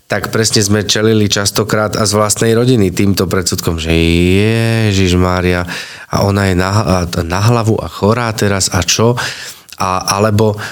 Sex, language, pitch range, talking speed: male, Slovak, 95-115 Hz, 150 wpm